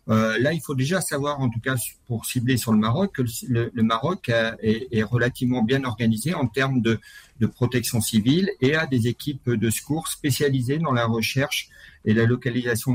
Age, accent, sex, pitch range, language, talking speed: 50-69, French, male, 115-140 Hz, French, 195 wpm